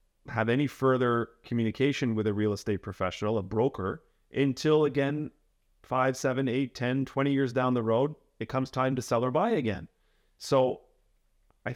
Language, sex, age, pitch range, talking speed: English, male, 30-49, 105-135 Hz, 165 wpm